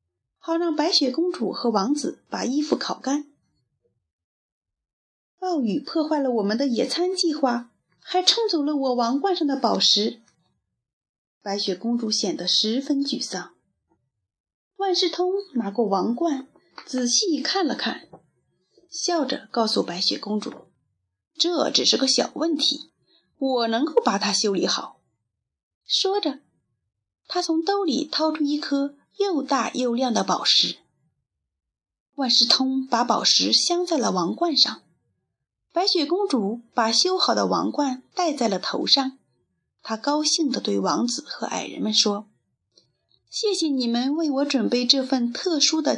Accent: native